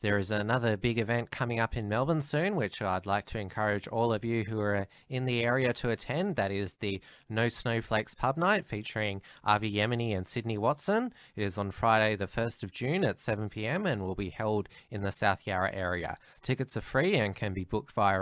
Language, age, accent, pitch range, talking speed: English, 20-39, Australian, 100-125 Hz, 215 wpm